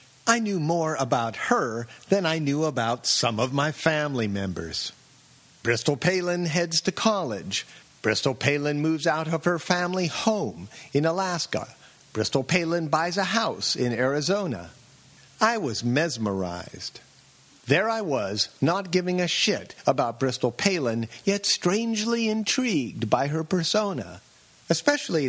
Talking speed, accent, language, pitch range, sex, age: 135 wpm, American, English, 125-180 Hz, male, 50-69